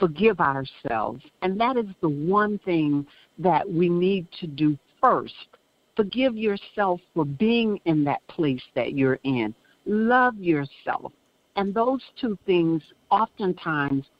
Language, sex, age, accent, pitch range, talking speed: English, female, 60-79, American, 160-225 Hz, 130 wpm